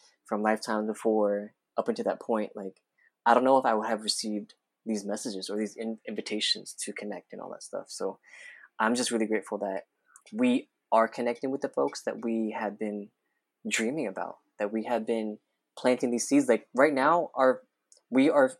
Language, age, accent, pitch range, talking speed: English, 20-39, American, 110-135 Hz, 185 wpm